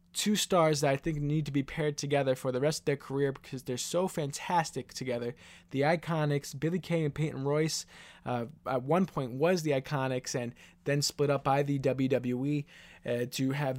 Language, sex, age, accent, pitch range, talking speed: English, male, 20-39, American, 140-185 Hz, 195 wpm